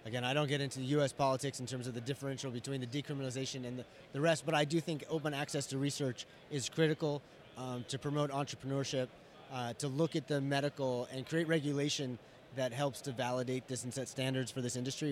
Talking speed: 215 wpm